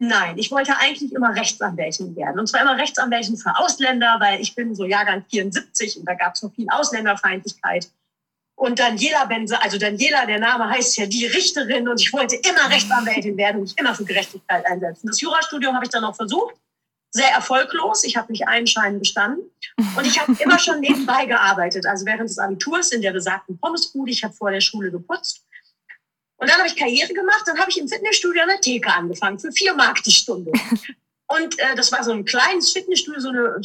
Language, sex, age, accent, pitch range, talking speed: German, female, 30-49, German, 215-295 Hz, 205 wpm